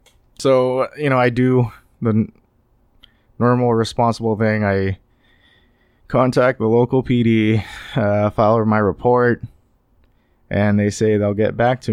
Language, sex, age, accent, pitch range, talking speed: English, male, 20-39, American, 95-110 Hz, 125 wpm